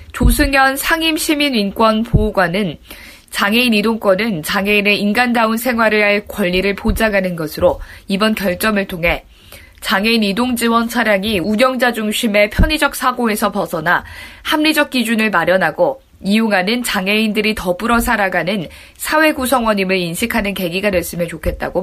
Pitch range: 200-260 Hz